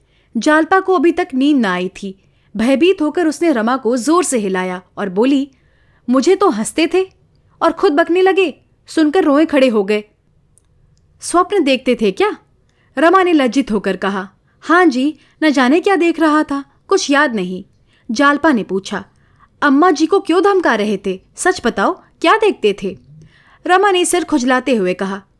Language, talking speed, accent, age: Hindi, 170 wpm, native, 30-49